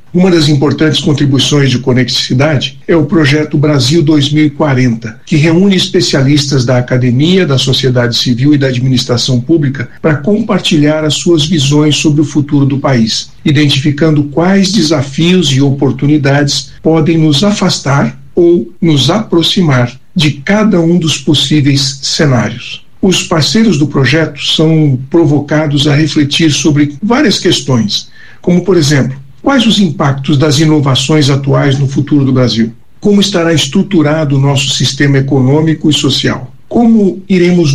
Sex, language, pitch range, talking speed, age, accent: male, Portuguese, 135-170 Hz, 135 wpm, 60-79, Brazilian